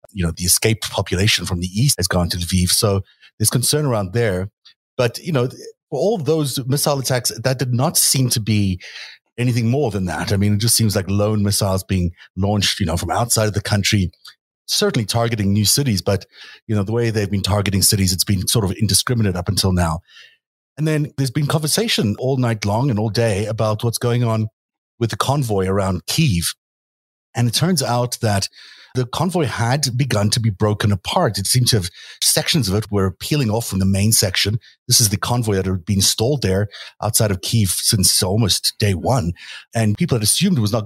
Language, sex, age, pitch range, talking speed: English, male, 30-49, 100-125 Hz, 210 wpm